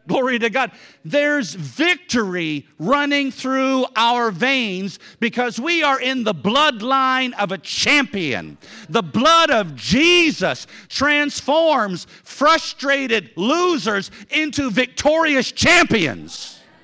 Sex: male